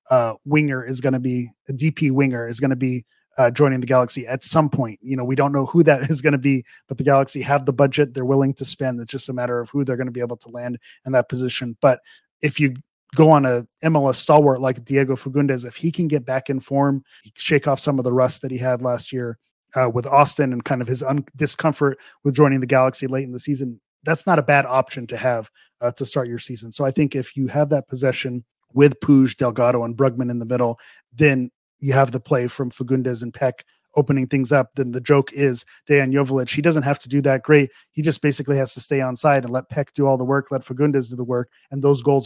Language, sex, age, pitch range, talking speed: English, male, 30-49, 125-145 Hz, 255 wpm